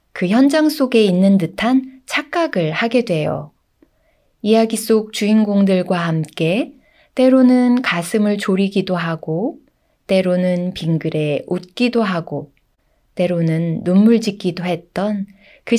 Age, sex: 20-39, female